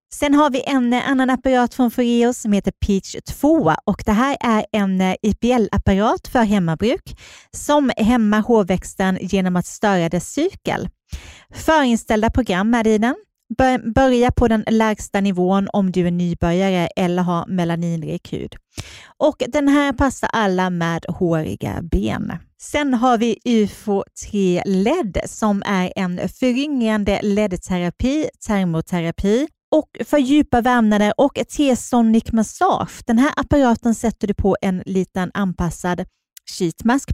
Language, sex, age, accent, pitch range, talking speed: Swedish, female, 30-49, native, 185-245 Hz, 135 wpm